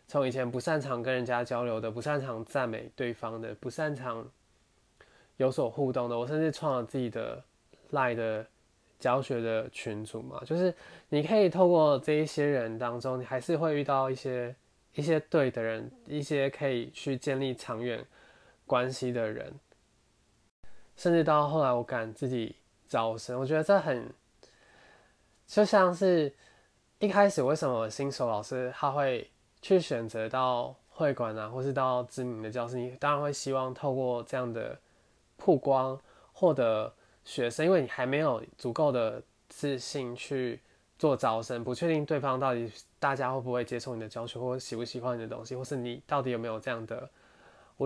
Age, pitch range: 20-39, 120-145 Hz